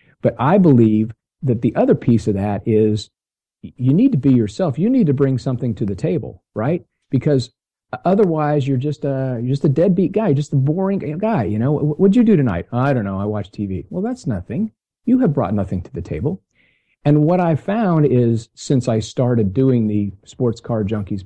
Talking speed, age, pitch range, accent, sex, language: 205 wpm, 50-69, 110-150 Hz, American, male, French